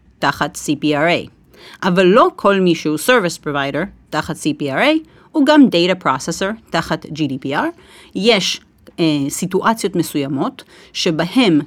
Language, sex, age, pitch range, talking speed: Hebrew, female, 40-59, 155-220 Hz, 110 wpm